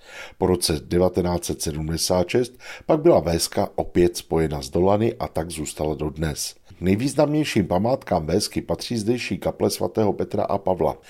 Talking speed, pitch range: 135 wpm, 85-110 Hz